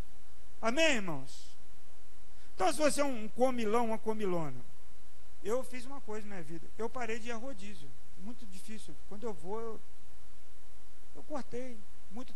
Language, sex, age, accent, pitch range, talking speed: Portuguese, male, 50-69, Brazilian, 165-235 Hz, 155 wpm